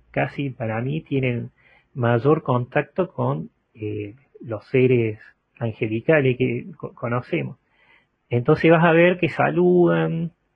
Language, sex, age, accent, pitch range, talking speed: Spanish, male, 30-49, Argentinian, 120-160 Hz, 115 wpm